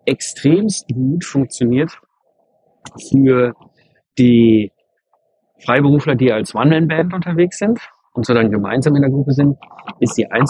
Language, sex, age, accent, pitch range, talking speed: German, male, 50-69, German, 120-145 Hz, 125 wpm